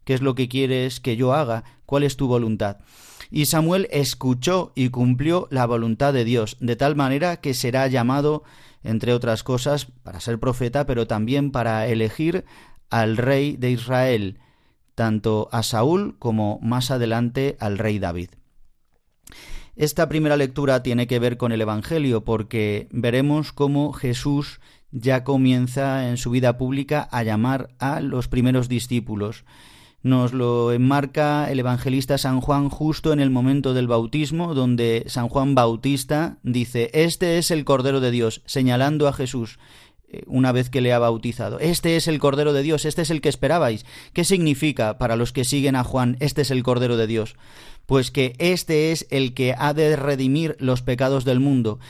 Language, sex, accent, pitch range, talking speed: Spanish, male, Spanish, 120-145 Hz, 170 wpm